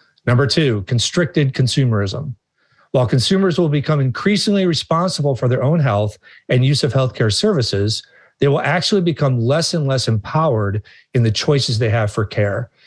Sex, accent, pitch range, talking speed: male, American, 115-155 Hz, 160 wpm